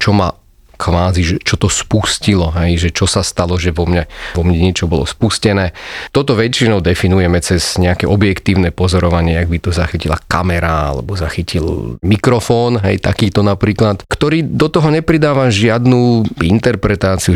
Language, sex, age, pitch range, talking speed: Slovak, male, 30-49, 85-110 Hz, 150 wpm